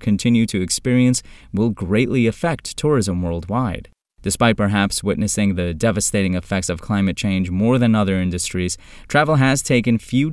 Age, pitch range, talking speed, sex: 30-49, 100-145 Hz, 145 wpm, male